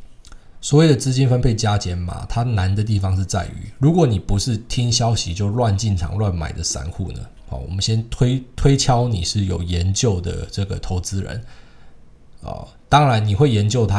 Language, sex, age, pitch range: Chinese, male, 20-39, 95-115 Hz